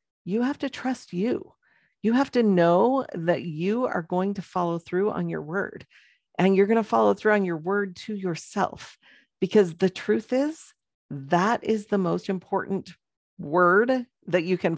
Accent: American